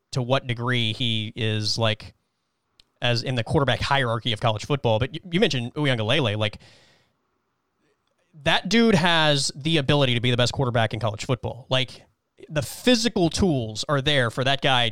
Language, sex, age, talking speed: English, male, 20-39, 165 wpm